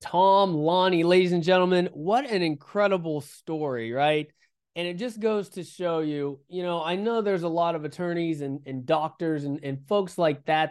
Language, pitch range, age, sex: English, 135-170 Hz, 20-39, male